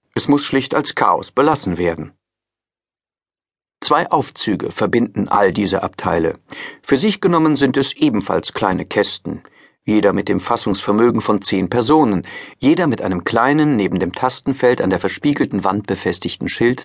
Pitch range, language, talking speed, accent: 95-125 Hz, German, 145 wpm, German